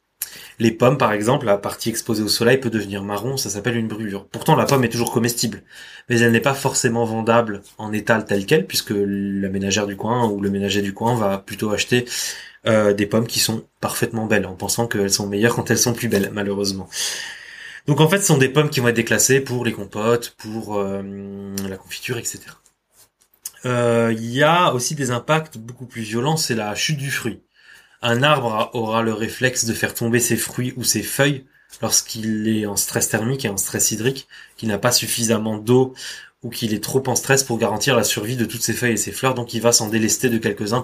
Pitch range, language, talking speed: 105-125 Hz, French, 215 wpm